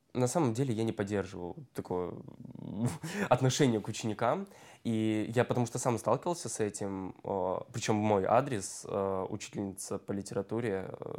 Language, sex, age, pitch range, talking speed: Russian, male, 20-39, 105-120 Hz, 130 wpm